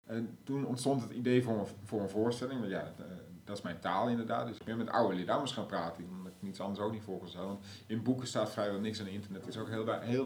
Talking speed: 255 wpm